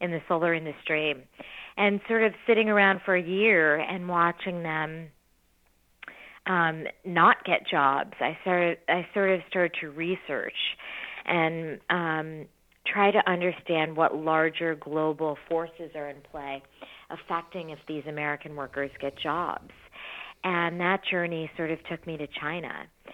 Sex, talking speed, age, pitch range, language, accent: female, 140 wpm, 40-59, 150-180 Hz, English, American